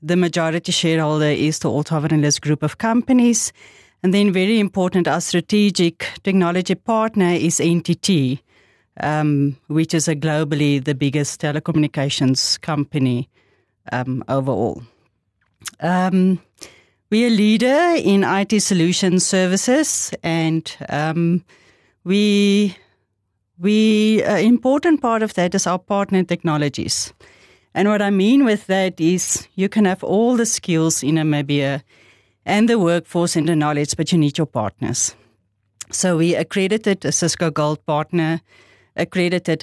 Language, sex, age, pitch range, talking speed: English, female, 30-49, 145-190 Hz, 130 wpm